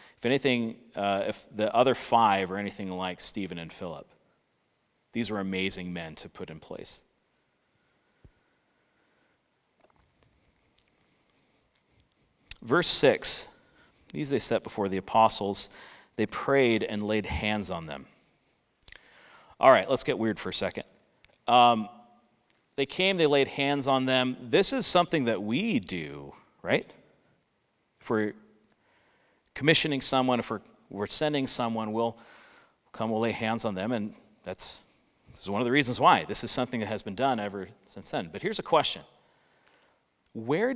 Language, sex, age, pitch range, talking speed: English, male, 30-49, 100-135 Hz, 145 wpm